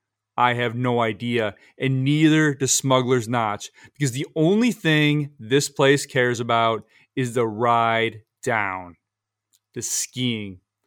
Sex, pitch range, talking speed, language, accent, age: male, 110-130 Hz, 125 wpm, English, American, 30-49